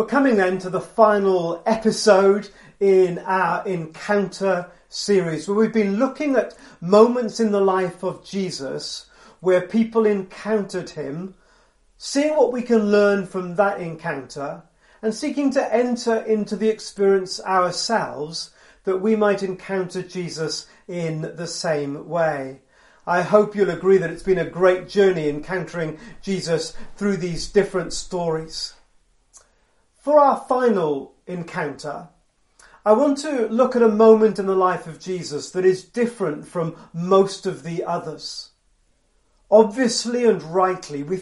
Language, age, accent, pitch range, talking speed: English, 40-59, British, 170-220 Hz, 140 wpm